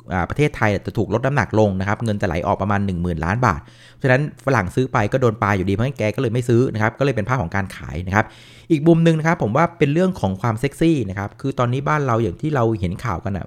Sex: male